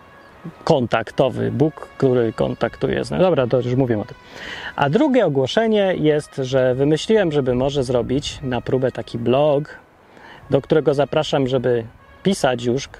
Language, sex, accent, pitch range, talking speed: Polish, male, native, 130-170 Hz, 135 wpm